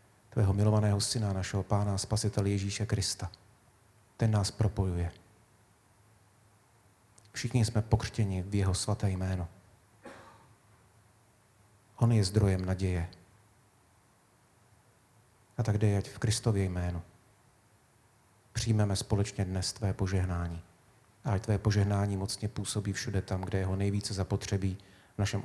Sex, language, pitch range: male, Czech, 95-110 Hz